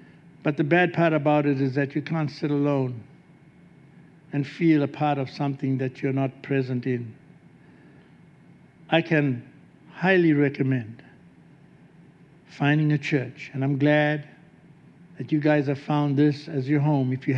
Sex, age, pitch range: male, 60-79, 135-160 Hz